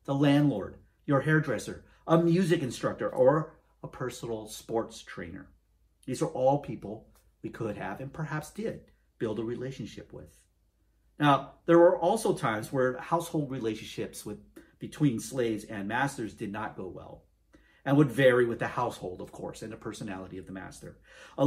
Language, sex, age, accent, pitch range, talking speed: English, male, 50-69, American, 115-165 Hz, 160 wpm